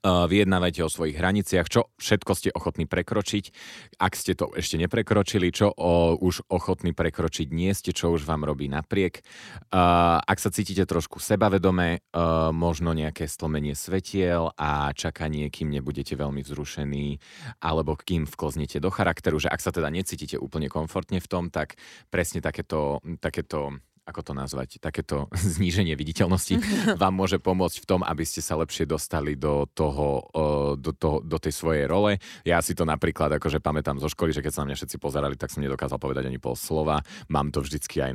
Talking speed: 175 wpm